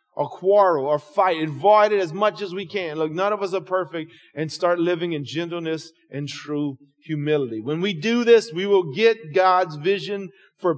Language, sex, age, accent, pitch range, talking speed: English, male, 40-59, American, 145-185 Hz, 195 wpm